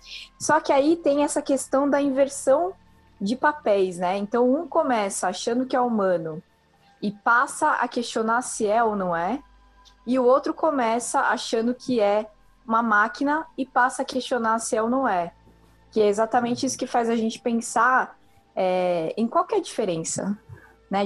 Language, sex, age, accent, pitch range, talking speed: Portuguese, female, 20-39, Brazilian, 190-255 Hz, 175 wpm